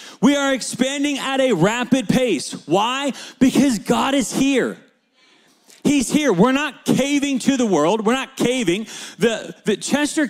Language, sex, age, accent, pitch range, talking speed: English, male, 40-59, American, 180-230 Hz, 150 wpm